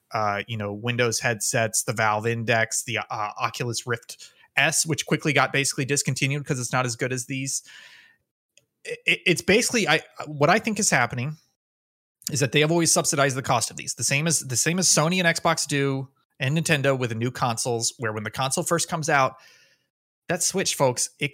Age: 30-49